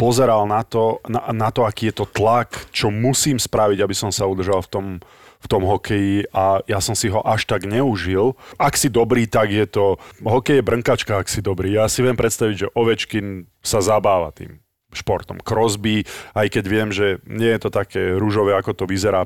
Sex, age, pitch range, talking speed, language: male, 30-49, 100-115 Hz, 205 wpm, Slovak